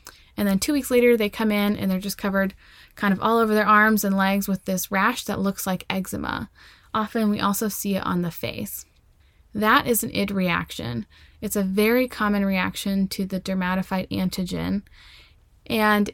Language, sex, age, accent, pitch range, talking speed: English, female, 10-29, American, 185-220 Hz, 185 wpm